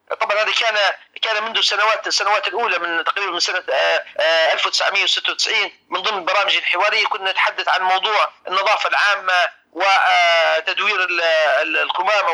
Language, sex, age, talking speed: Arabic, male, 40-59, 120 wpm